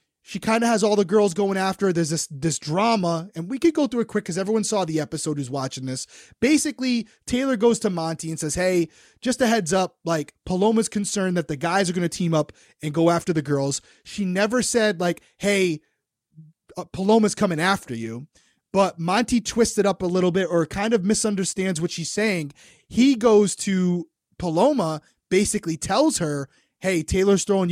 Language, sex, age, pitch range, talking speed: English, male, 30-49, 165-215 Hz, 195 wpm